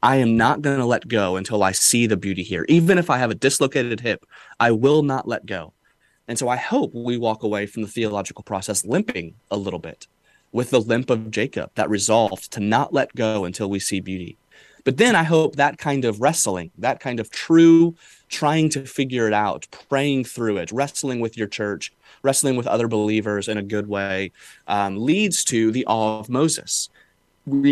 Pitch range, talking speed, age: 105-140 Hz, 205 wpm, 30-49